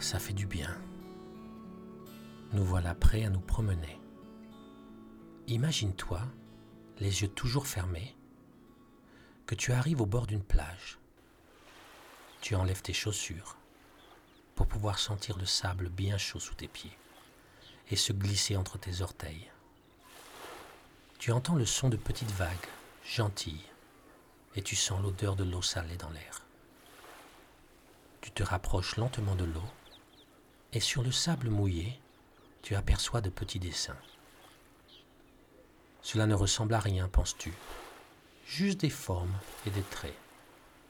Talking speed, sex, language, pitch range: 130 wpm, male, French, 90-115 Hz